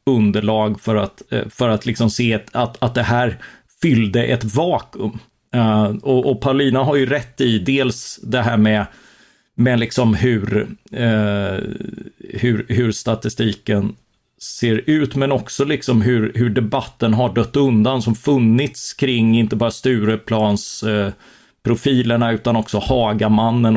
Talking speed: 140 wpm